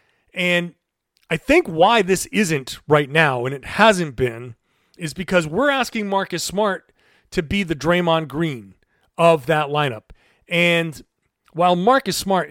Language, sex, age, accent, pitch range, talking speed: English, male, 30-49, American, 155-210 Hz, 145 wpm